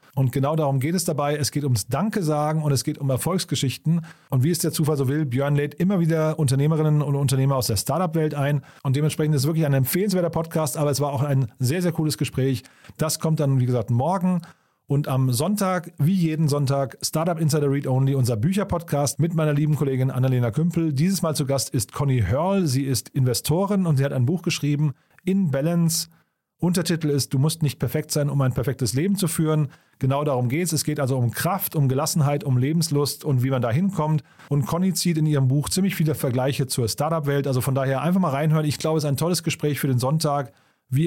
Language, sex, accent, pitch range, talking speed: German, male, German, 135-160 Hz, 220 wpm